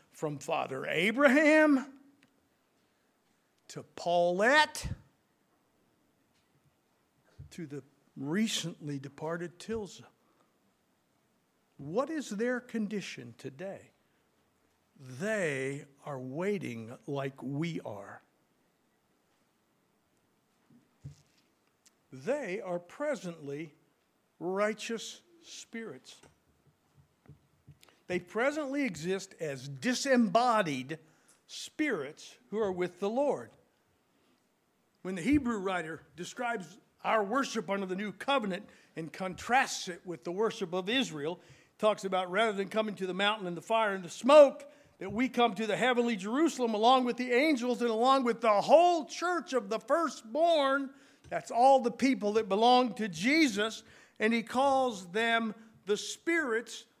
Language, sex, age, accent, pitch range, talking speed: English, male, 60-79, American, 175-255 Hz, 110 wpm